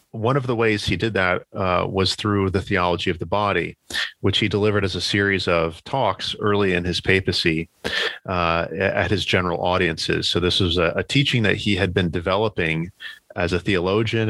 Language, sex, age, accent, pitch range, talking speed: English, male, 40-59, American, 85-105 Hz, 190 wpm